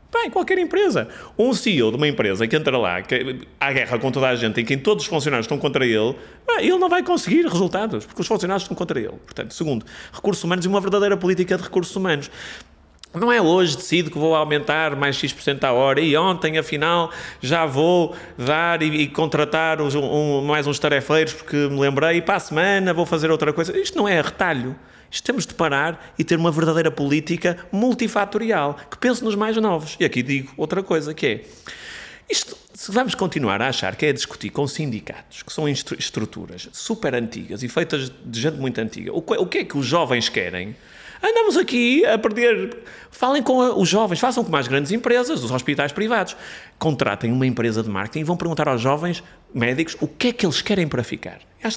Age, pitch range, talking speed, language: 30-49, 145-215 Hz, 205 wpm, Portuguese